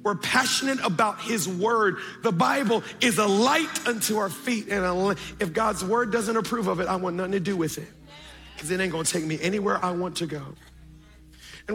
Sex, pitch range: male, 175-230 Hz